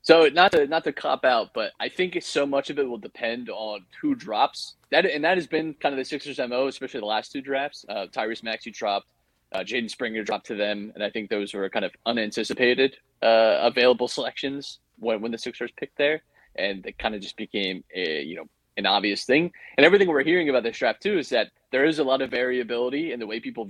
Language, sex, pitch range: English, male, 115-150 Hz